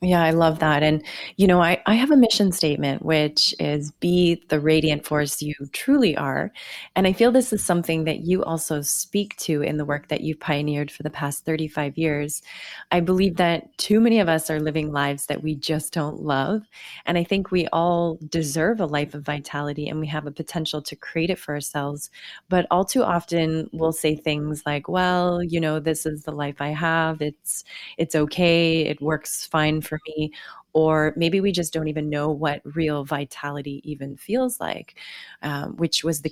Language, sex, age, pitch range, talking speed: English, female, 20-39, 150-175 Hz, 205 wpm